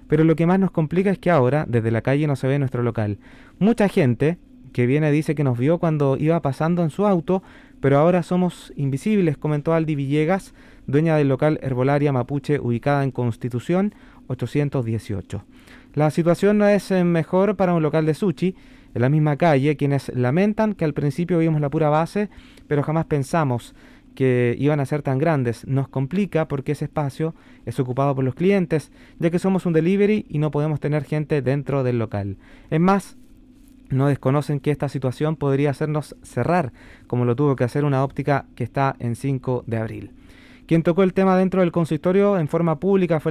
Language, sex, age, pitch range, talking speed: Spanish, male, 30-49, 135-175 Hz, 190 wpm